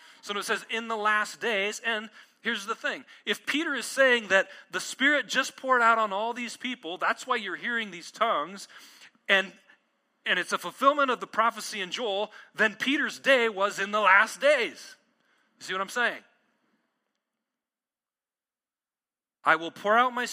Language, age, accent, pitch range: English, 40-59, American, 200-260 Hz